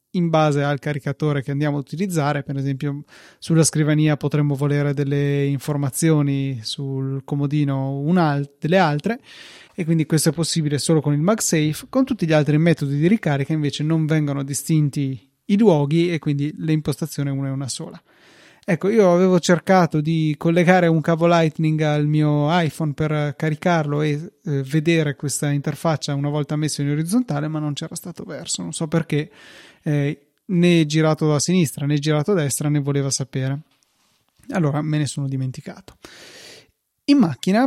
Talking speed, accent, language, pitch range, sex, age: 160 wpm, native, Italian, 145-170 Hz, male, 30-49